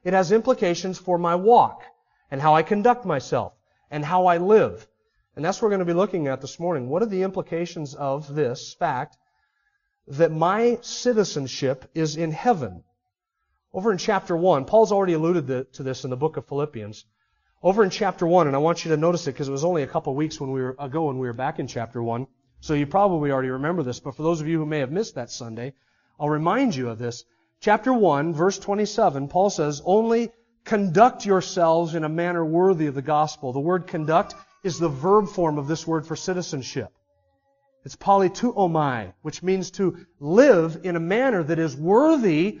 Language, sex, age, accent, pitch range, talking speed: English, male, 40-59, American, 150-210 Hz, 200 wpm